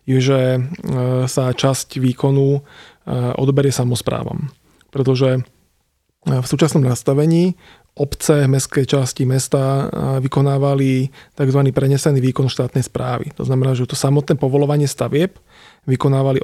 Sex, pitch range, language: male, 125-145 Hz, Slovak